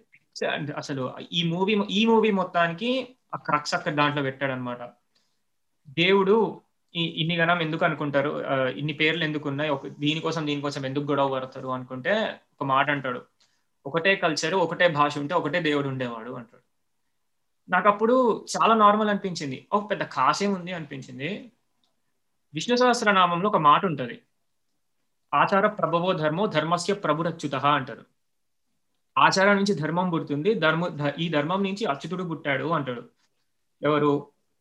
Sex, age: male, 20-39